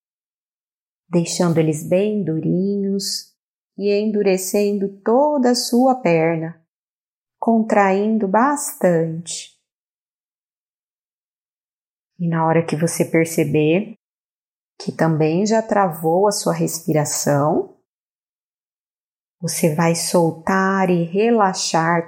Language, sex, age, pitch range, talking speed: Portuguese, female, 30-49, 170-205 Hz, 80 wpm